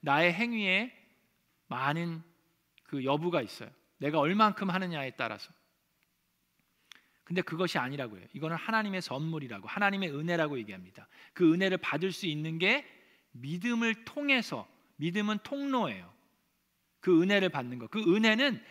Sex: male